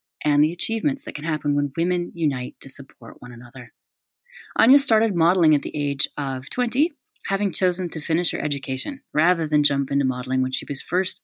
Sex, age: female, 30-49